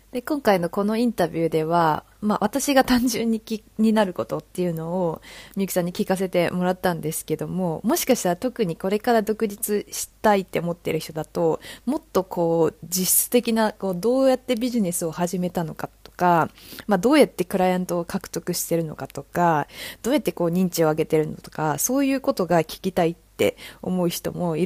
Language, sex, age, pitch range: Japanese, female, 20-39, 165-215 Hz